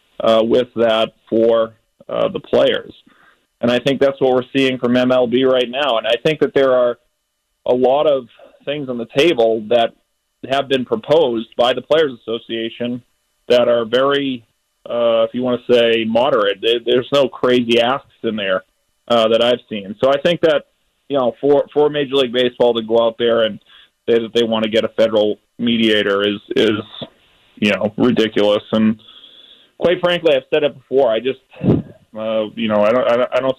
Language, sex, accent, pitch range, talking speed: English, male, American, 115-135 Hz, 190 wpm